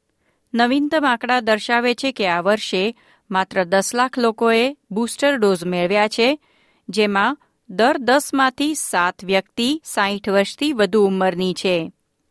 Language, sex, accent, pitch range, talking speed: Gujarati, female, native, 195-245 Hz, 120 wpm